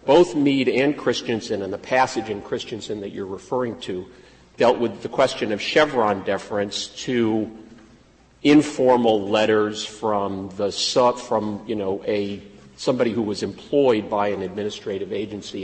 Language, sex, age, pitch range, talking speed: English, male, 50-69, 105-125 Hz, 140 wpm